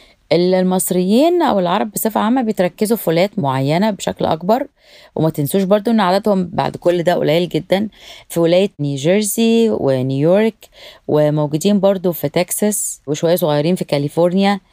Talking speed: 135 wpm